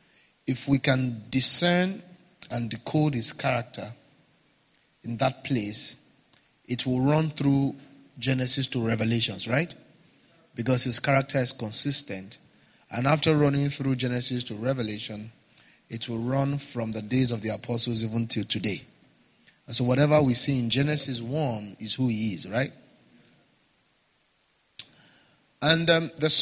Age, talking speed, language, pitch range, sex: 30-49, 135 wpm, English, 115-140 Hz, male